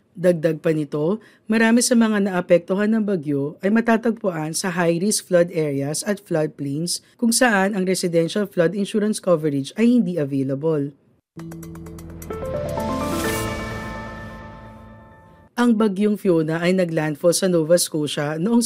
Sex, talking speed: female, 115 wpm